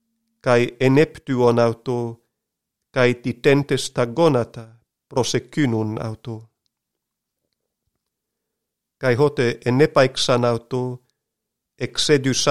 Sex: male